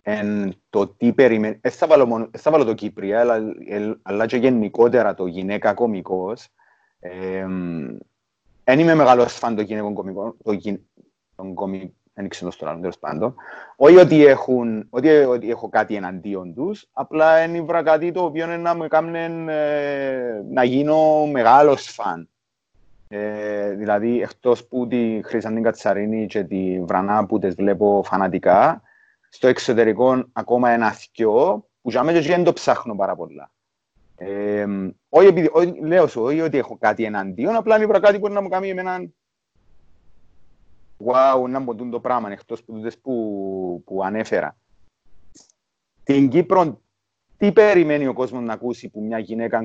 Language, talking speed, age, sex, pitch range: Greek, 120 wpm, 30-49, male, 100-135 Hz